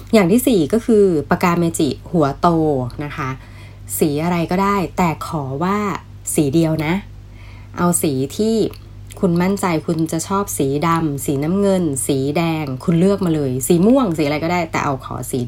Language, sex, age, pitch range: Thai, female, 20-39, 135-180 Hz